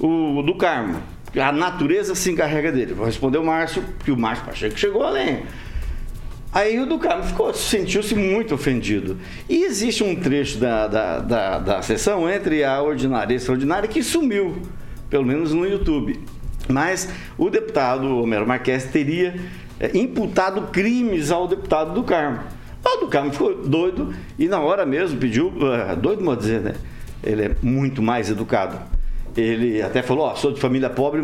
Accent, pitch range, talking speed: Brazilian, 125-180 Hz, 170 wpm